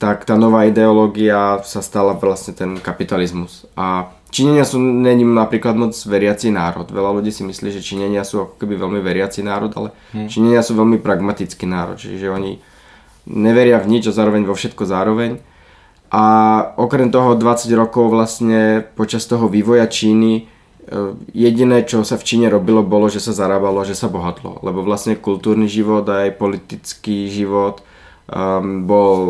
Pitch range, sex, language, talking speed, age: 95-110 Hz, male, Czech, 150 wpm, 20-39